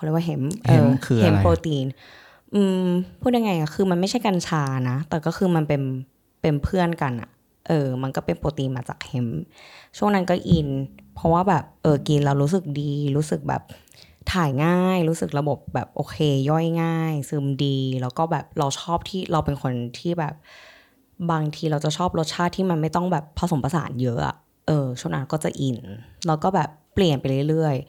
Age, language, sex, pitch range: 10-29, Thai, female, 135-170 Hz